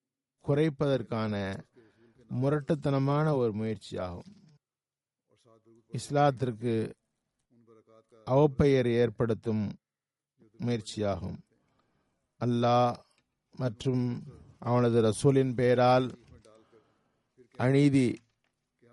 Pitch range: 115-135 Hz